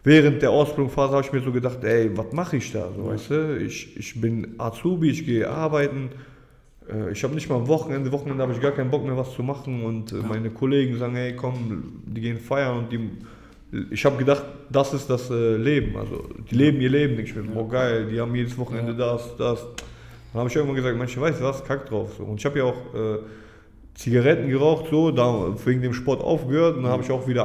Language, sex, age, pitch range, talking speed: German, male, 20-39, 115-140 Hz, 220 wpm